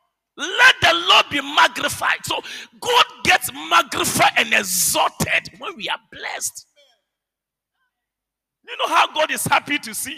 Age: 40-59